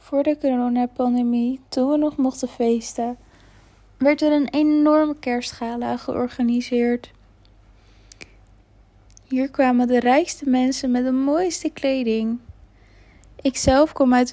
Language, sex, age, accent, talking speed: Dutch, female, 20-39, Dutch, 110 wpm